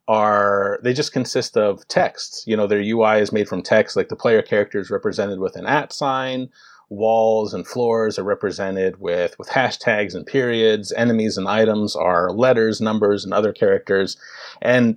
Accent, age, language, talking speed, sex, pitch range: American, 30-49, English, 175 wpm, male, 100-125 Hz